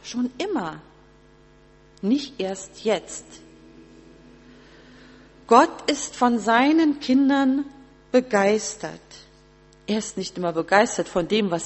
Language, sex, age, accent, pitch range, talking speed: German, female, 40-59, German, 180-250 Hz, 100 wpm